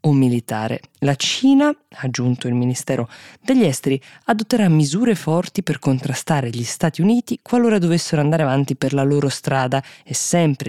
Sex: female